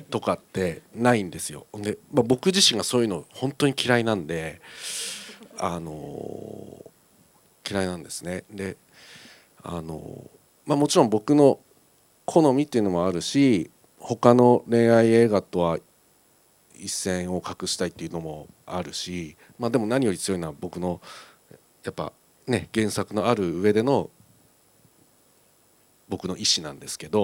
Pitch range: 85-125 Hz